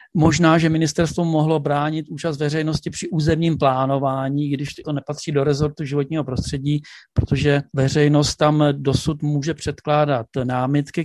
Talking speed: 130 wpm